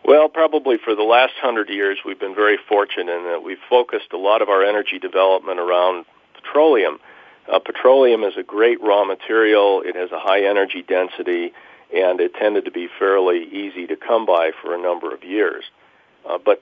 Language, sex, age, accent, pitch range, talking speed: English, male, 40-59, American, 325-445 Hz, 190 wpm